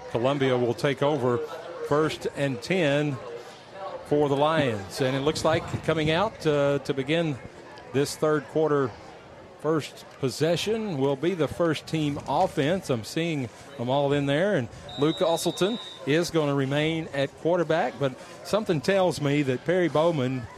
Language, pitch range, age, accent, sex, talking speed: English, 125-155 Hz, 40-59, American, male, 150 wpm